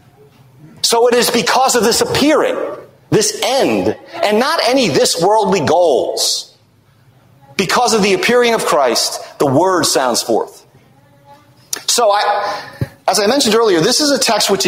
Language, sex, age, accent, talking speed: English, male, 40-59, American, 140 wpm